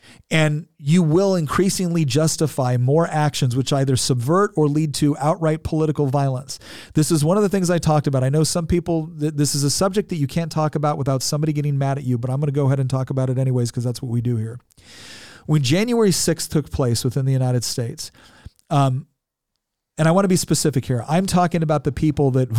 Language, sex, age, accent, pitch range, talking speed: English, male, 40-59, American, 130-160 Hz, 225 wpm